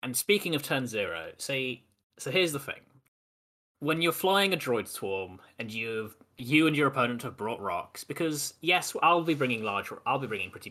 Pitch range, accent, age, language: 110-165 Hz, British, 10-29, English